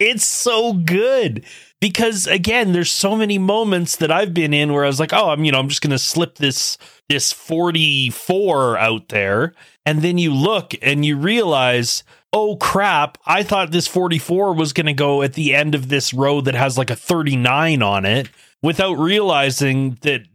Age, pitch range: 30-49, 135-175 Hz